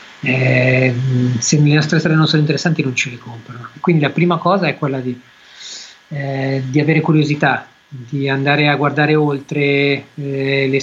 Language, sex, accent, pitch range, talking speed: Italian, male, native, 135-160 Hz, 165 wpm